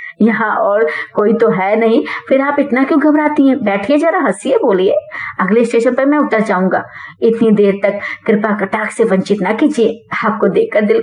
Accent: native